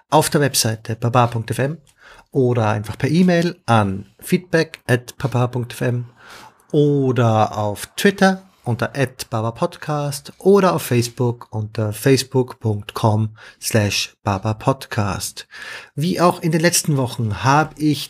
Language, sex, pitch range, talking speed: German, male, 125-160 Hz, 110 wpm